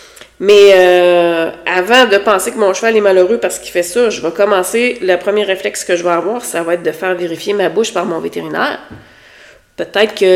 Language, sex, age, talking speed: French, female, 30-49, 215 wpm